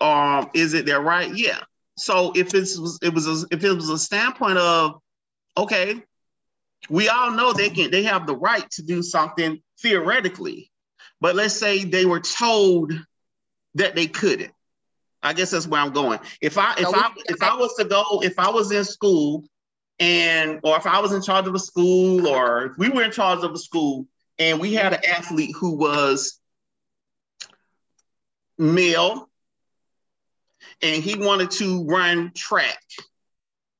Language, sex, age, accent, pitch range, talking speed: English, male, 30-49, American, 160-195 Hz, 165 wpm